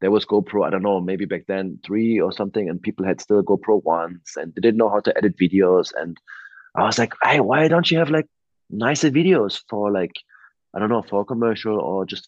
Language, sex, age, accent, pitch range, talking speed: English, male, 20-39, German, 95-110 Hz, 235 wpm